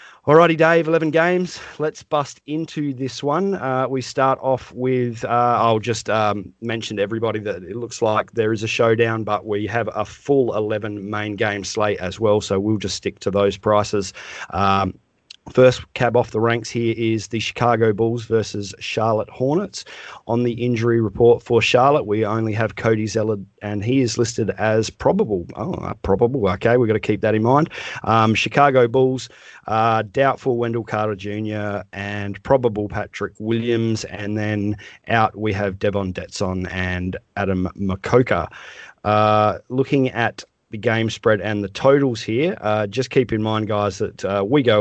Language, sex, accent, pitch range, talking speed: English, male, Australian, 105-125 Hz, 175 wpm